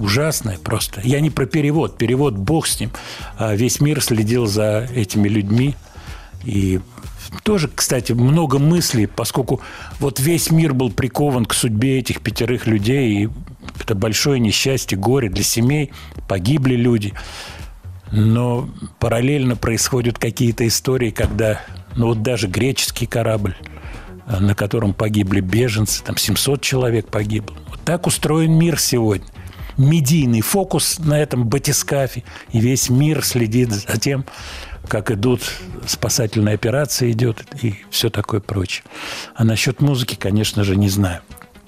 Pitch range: 105-135 Hz